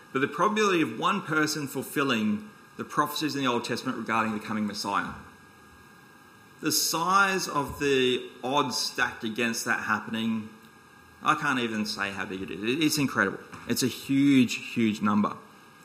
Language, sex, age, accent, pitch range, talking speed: English, male, 30-49, Australian, 120-170 Hz, 155 wpm